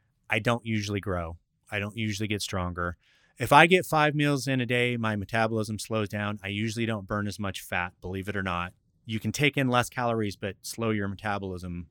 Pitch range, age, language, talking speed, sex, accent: 105-130 Hz, 30-49, English, 210 wpm, male, American